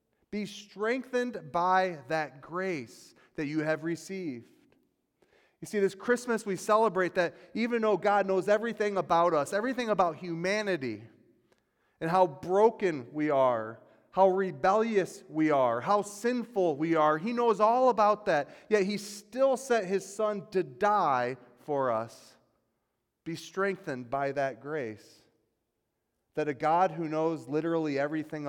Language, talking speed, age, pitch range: English, 140 wpm, 30-49, 135-190 Hz